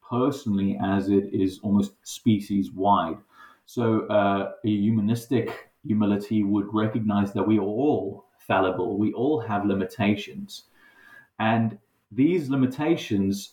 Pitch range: 100-115 Hz